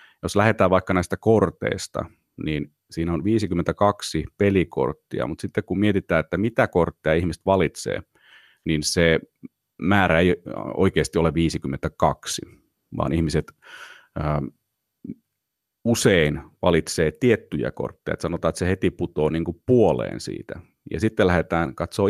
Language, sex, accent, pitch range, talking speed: Finnish, male, native, 80-100 Hz, 125 wpm